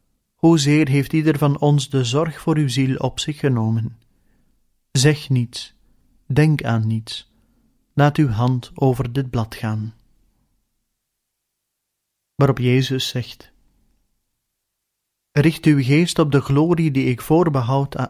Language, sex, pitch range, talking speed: Dutch, male, 115-145 Hz, 125 wpm